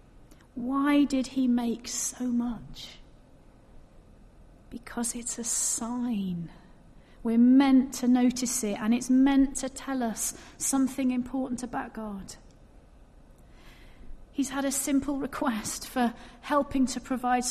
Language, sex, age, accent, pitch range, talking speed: English, female, 40-59, British, 210-260 Hz, 115 wpm